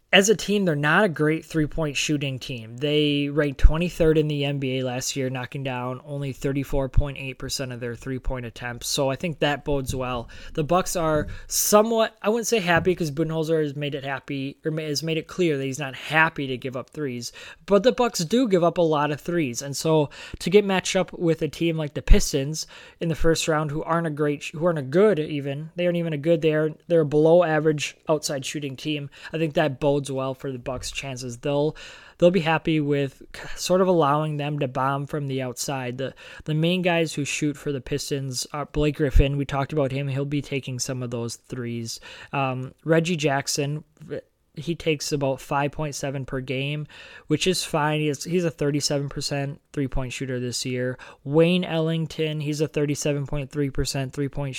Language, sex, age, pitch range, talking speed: English, male, 20-39, 135-160 Hz, 200 wpm